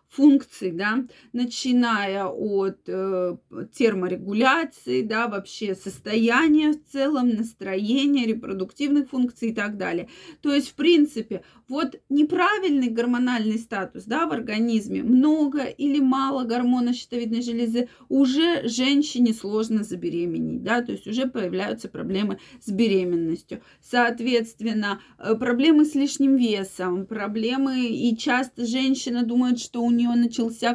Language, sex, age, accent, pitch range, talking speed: Russian, female, 20-39, native, 220-265 Hz, 120 wpm